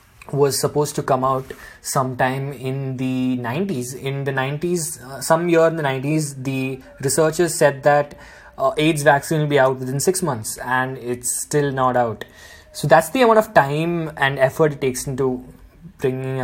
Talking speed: 175 wpm